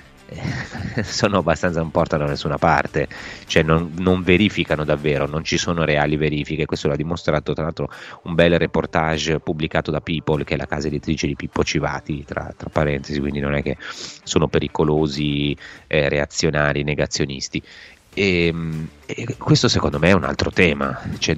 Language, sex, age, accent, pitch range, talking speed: Italian, male, 30-49, native, 75-85 Hz, 160 wpm